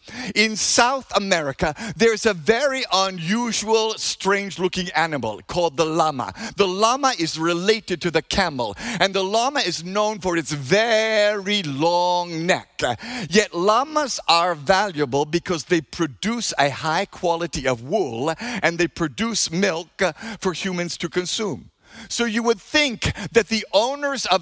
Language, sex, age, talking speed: English, male, 50-69, 140 wpm